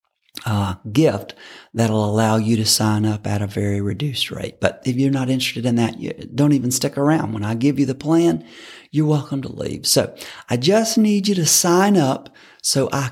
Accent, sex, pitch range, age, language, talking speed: American, male, 110-155 Hz, 40-59, English, 205 wpm